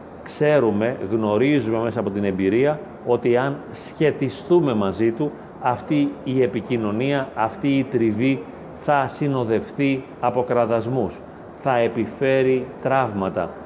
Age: 40-59